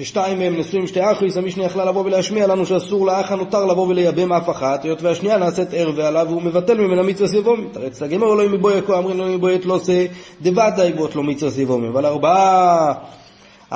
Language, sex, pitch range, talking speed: Hebrew, male, 160-195 Hz, 185 wpm